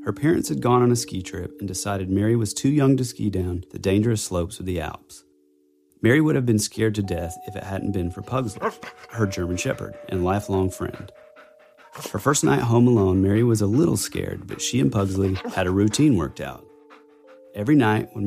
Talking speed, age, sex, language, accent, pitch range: 210 wpm, 30-49, male, English, American, 95-120 Hz